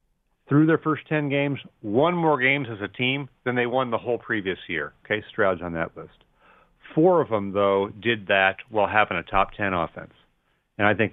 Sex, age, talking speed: male, 40-59, 205 wpm